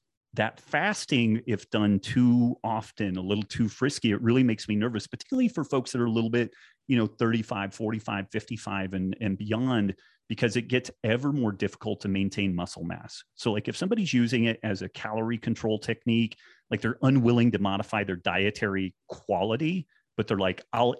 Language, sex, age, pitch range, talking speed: English, male, 30-49, 100-120 Hz, 185 wpm